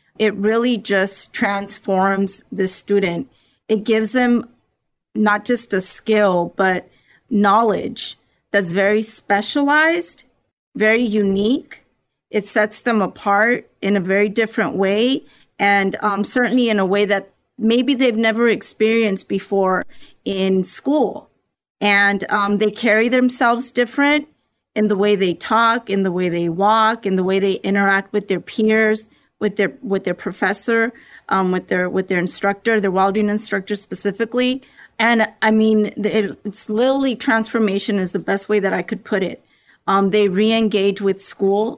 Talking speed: 150 wpm